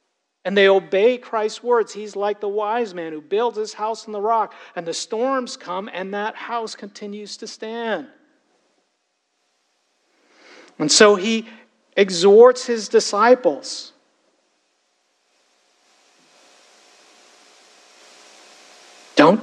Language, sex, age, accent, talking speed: English, male, 50-69, American, 105 wpm